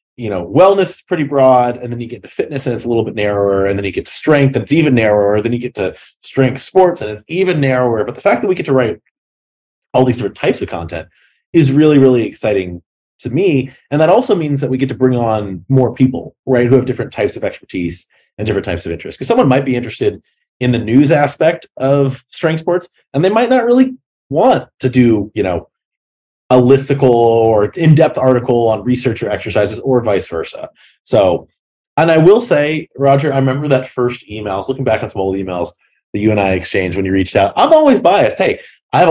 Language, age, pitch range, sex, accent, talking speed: English, 30-49, 110-145 Hz, male, American, 230 wpm